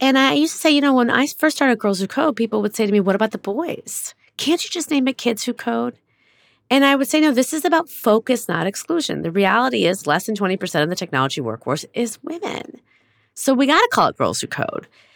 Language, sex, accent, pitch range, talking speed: English, female, American, 170-280 Hz, 245 wpm